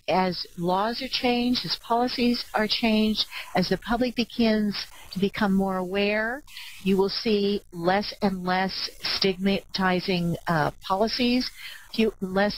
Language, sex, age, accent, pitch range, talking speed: English, female, 50-69, American, 165-215 Hz, 125 wpm